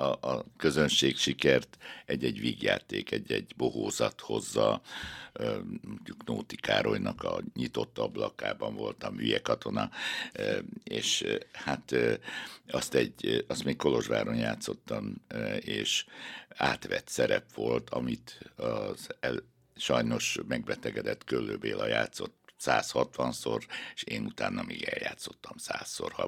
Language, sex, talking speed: Hungarian, male, 105 wpm